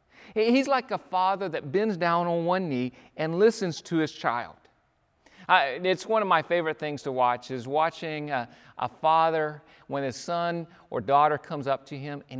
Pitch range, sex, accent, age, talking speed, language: 130-195 Hz, male, American, 40-59, 190 wpm, English